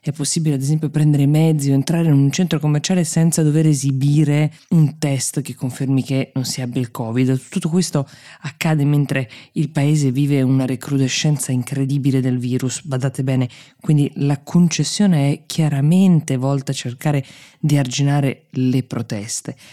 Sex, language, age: female, Italian, 20-39